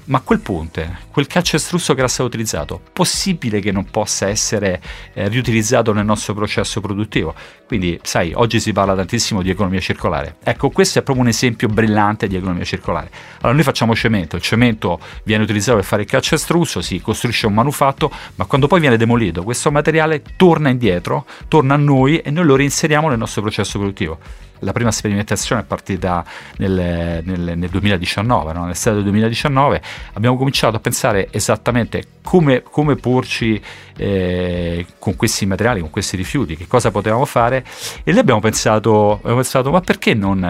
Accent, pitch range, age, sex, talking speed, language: native, 95-125 Hz, 40-59, male, 175 wpm, Italian